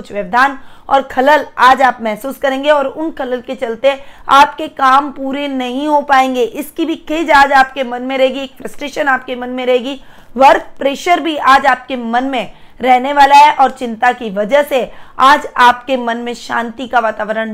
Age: 20-39